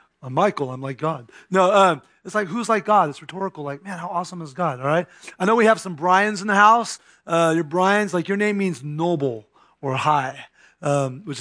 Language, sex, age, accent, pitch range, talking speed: English, male, 30-49, American, 150-200 Hz, 225 wpm